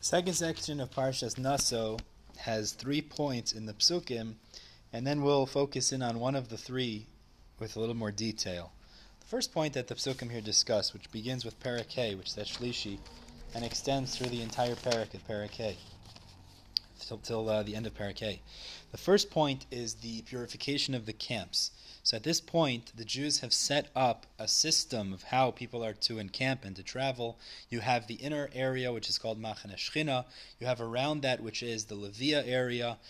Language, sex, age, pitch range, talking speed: English, male, 20-39, 110-135 Hz, 190 wpm